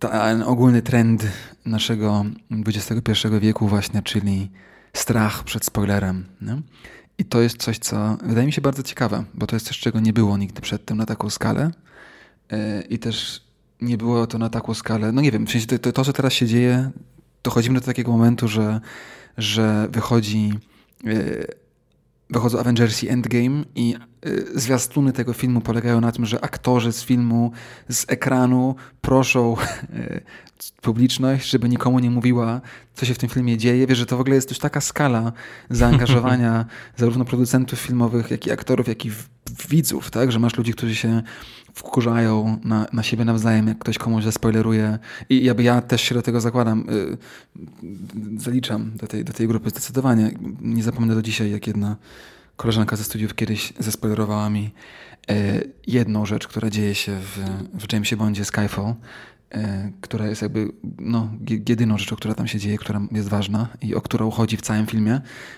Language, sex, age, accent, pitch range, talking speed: Polish, male, 20-39, native, 110-125 Hz, 175 wpm